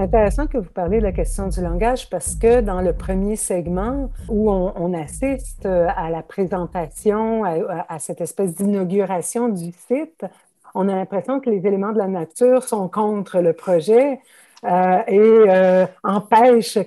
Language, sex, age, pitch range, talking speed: French, female, 50-69, 185-235 Hz, 165 wpm